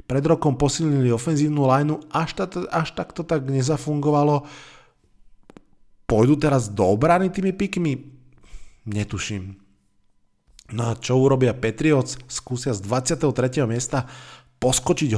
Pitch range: 120-145 Hz